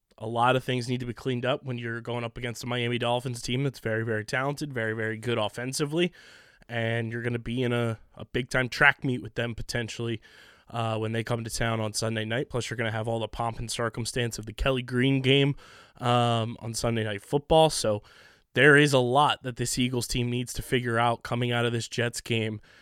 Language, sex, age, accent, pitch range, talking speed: English, male, 20-39, American, 115-130 Hz, 230 wpm